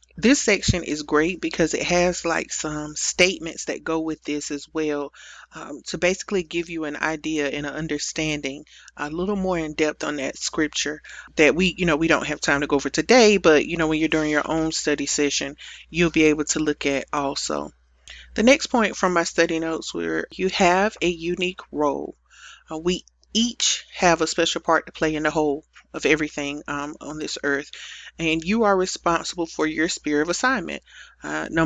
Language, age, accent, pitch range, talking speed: English, 30-49, American, 150-175 Hz, 200 wpm